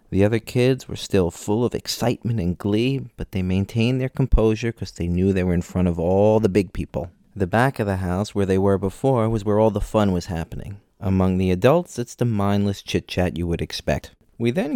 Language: English